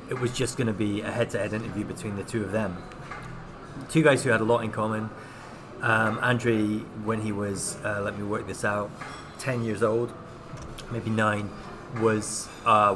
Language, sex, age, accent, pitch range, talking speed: English, male, 20-39, British, 105-125 Hz, 180 wpm